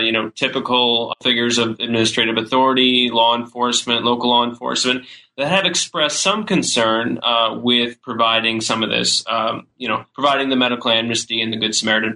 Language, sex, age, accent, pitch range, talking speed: English, male, 20-39, American, 115-130 Hz, 170 wpm